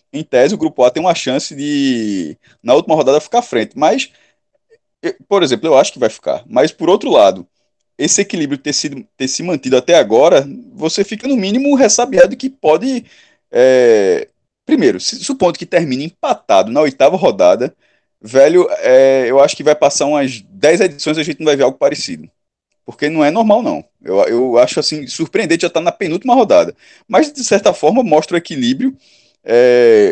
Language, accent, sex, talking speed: Portuguese, Brazilian, male, 175 wpm